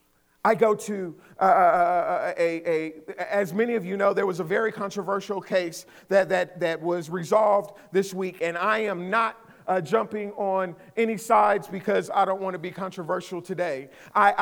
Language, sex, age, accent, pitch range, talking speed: English, male, 40-59, American, 190-235 Hz, 180 wpm